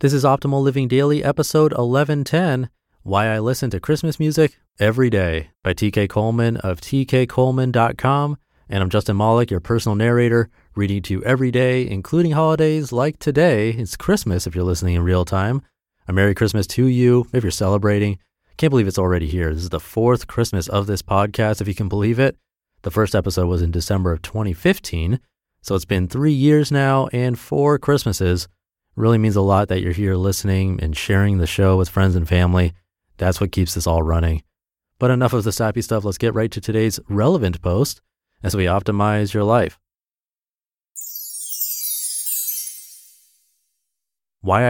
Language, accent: English, American